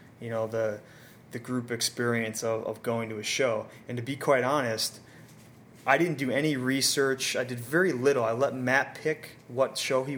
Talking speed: 195 wpm